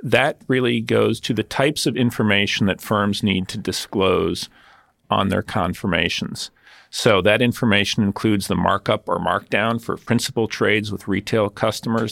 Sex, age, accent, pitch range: male, 40-59, American, 100-125 Hz